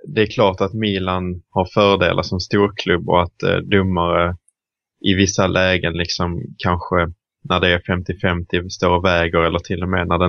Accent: Norwegian